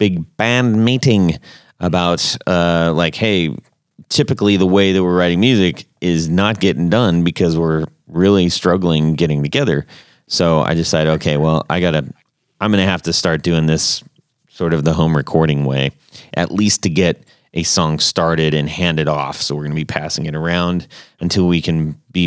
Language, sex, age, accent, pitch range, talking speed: English, male, 30-49, American, 80-105 Hz, 180 wpm